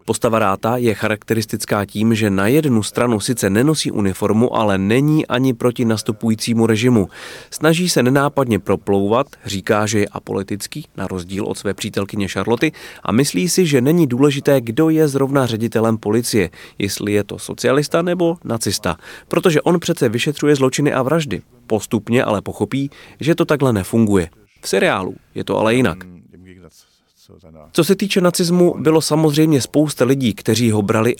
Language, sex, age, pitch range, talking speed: Czech, male, 30-49, 100-140 Hz, 155 wpm